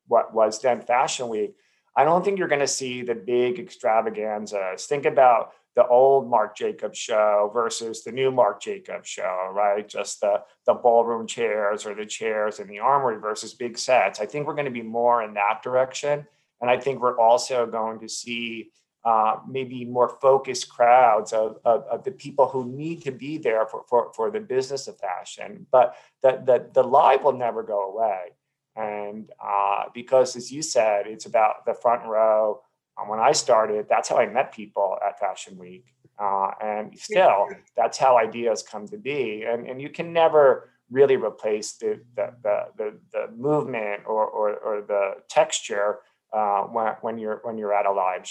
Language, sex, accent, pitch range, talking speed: English, male, American, 110-155 Hz, 185 wpm